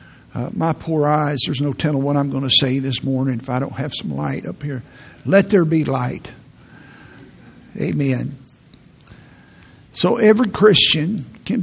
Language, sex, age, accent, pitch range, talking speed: English, male, 60-79, American, 140-175 Hz, 160 wpm